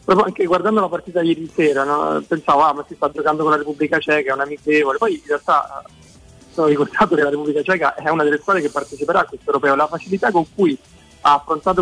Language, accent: Italian, native